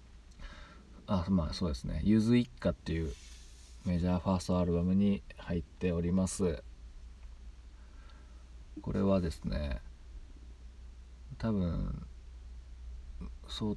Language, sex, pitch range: Japanese, male, 65-95 Hz